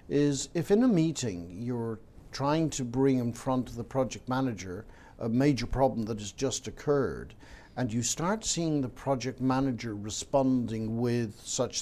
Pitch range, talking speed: 115-145 Hz, 165 wpm